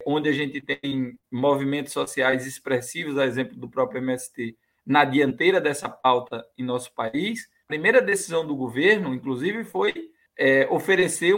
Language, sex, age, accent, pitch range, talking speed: Portuguese, male, 20-39, Brazilian, 130-190 Hz, 150 wpm